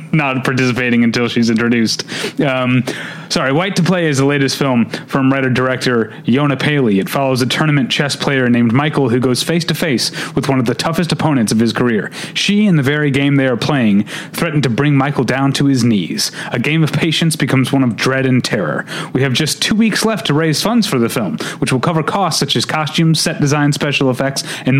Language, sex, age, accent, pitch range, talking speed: English, male, 30-49, American, 120-160 Hz, 220 wpm